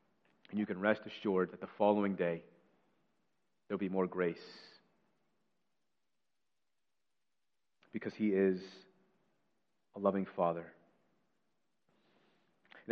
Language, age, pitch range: English, 30-49, 95-115 Hz